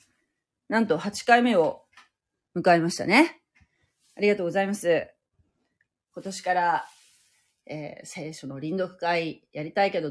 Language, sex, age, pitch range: Japanese, female, 30-49, 170-255 Hz